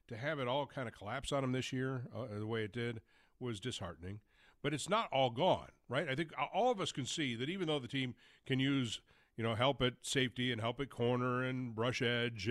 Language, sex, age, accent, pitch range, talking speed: English, male, 50-69, American, 115-135 Hz, 240 wpm